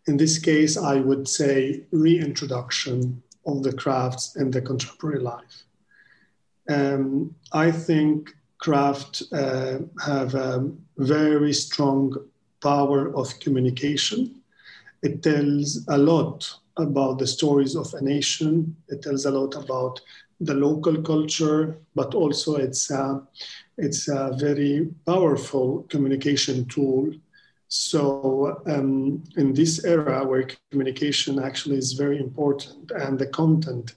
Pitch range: 135-155 Hz